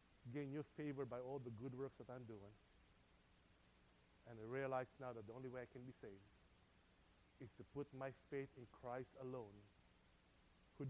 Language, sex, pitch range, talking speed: English, male, 105-140 Hz, 175 wpm